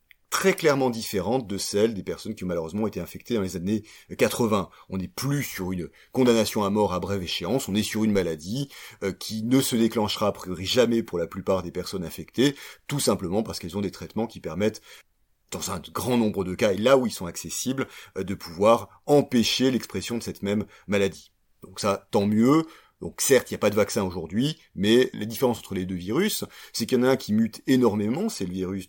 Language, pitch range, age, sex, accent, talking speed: French, 95-120 Hz, 30-49, male, French, 220 wpm